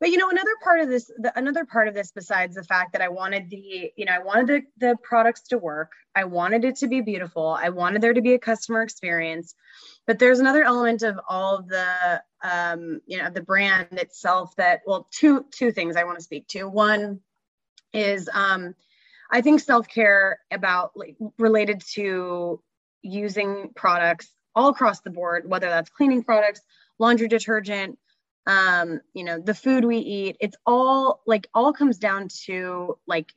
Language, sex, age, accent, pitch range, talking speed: English, female, 20-39, American, 170-220 Hz, 185 wpm